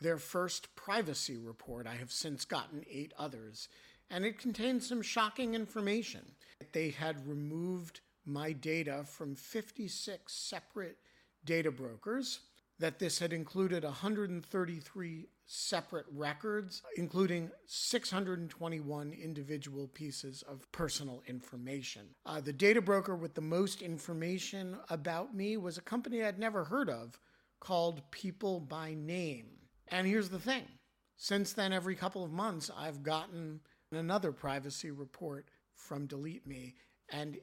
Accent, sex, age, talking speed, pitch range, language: American, male, 50-69, 125 wpm, 145-195 Hz, English